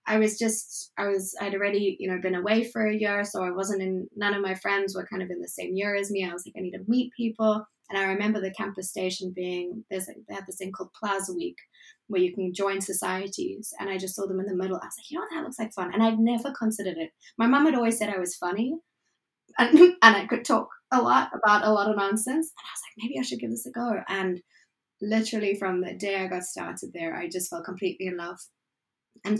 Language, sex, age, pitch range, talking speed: English, female, 20-39, 185-215 Hz, 265 wpm